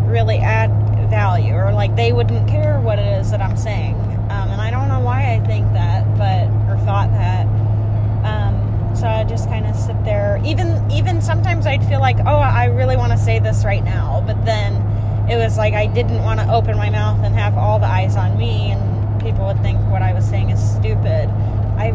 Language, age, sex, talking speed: English, 10-29, female, 220 wpm